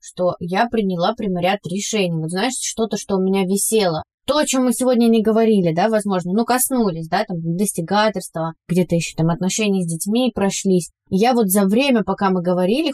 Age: 20-39